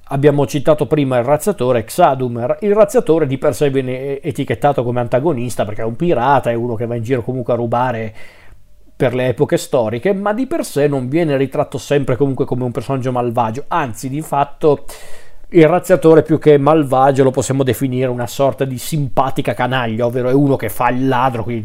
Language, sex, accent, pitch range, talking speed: Italian, male, native, 120-145 Hz, 190 wpm